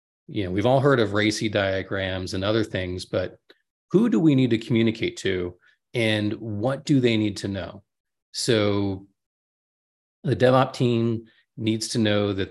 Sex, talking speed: male, 155 wpm